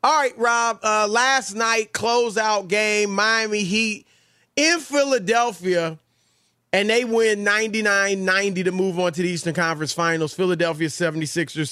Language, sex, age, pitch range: English, male, 30-49, 160-200 Hz